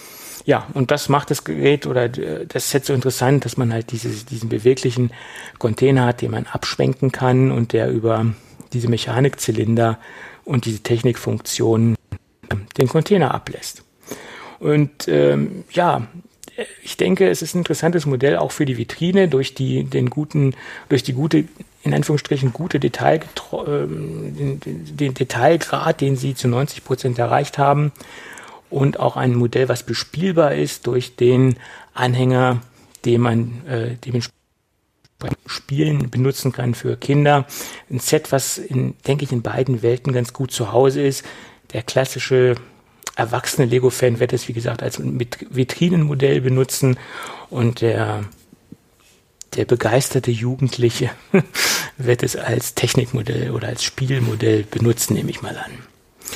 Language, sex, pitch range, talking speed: German, male, 120-140 Hz, 135 wpm